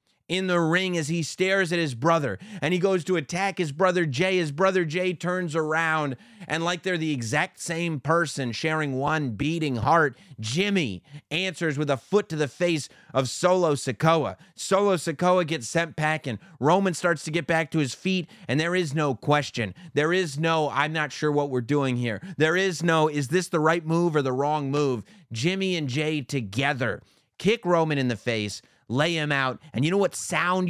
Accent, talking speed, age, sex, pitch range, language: American, 200 wpm, 30-49, male, 130-170 Hz, English